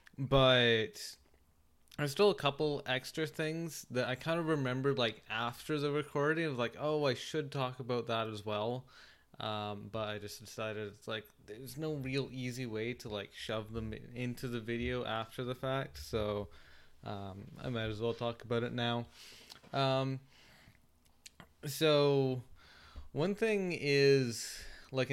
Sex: male